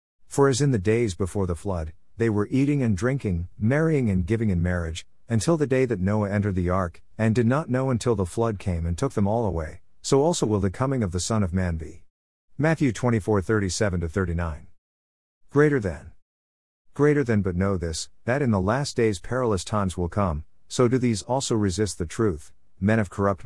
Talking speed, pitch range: 210 wpm, 90-120 Hz